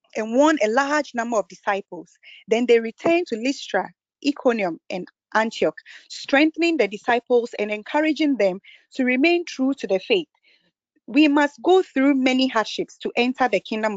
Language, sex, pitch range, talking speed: English, female, 200-265 Hz, 160 wpm